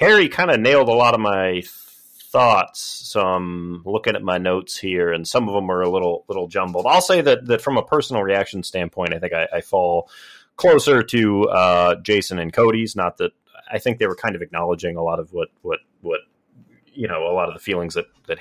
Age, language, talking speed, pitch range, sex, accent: 30-49, English, 225 wpm, 105-155 Hz, male, American